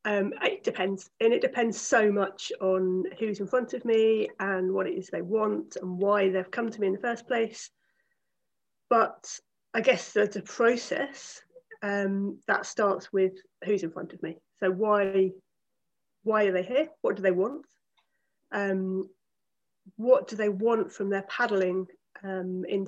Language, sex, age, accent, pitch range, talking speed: English, female, 30-49, British, 190-225 Hz, 170 wpm